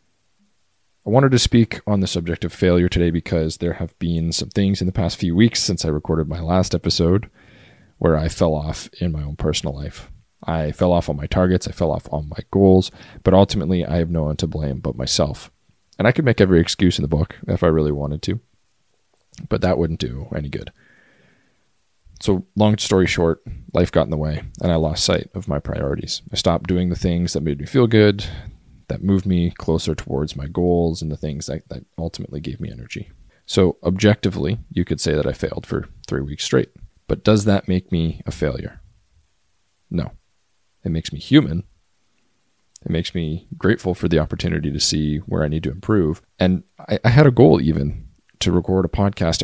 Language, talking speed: English, 205 wpm